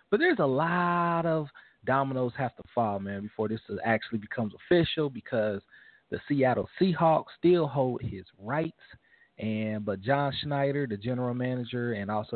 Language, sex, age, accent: English, male, 30-49, American